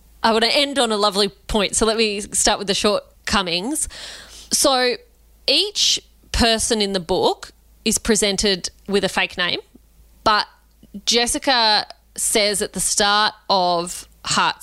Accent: Australian